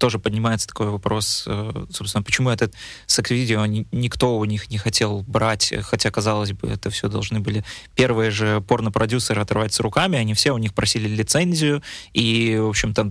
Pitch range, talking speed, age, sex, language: 105-120 Hz, 165 wpm, 20-39, male, Russian